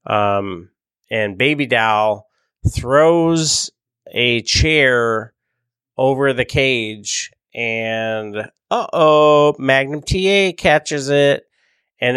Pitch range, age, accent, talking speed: 110-135 Hz, 30-49, American, 85 wpm